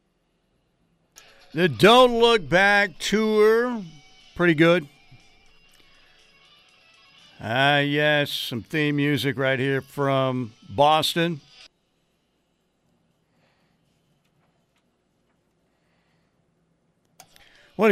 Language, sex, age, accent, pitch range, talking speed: English, male, 50-69, American, 120-155 Hz, 60 wpm